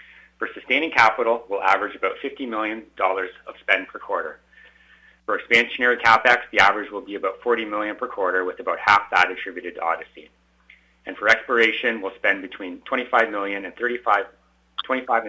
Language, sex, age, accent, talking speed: English, male, 40-59, American, 165 wpm